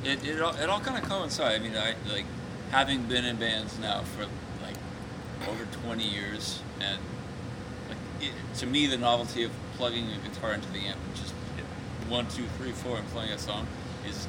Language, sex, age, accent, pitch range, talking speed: English, male, 30-49, American, 100-125 Hz, 195 wpm